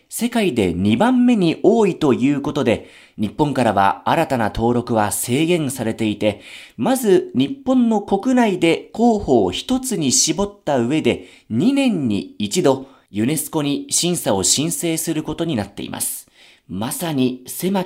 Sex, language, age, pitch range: male, Japanese, 40-59, 130-200 Hz